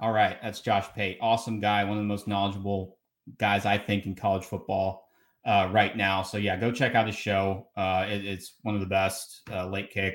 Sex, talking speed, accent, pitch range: male, 220 wpm, American, 100-135 Hz